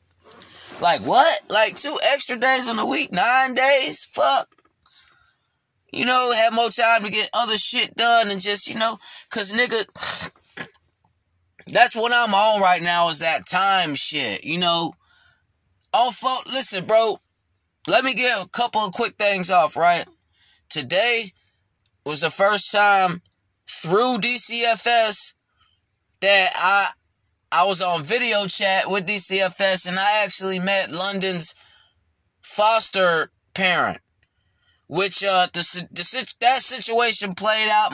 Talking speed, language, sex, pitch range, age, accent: 135 wpm, English, male, 170-220 Hz, 20-39, American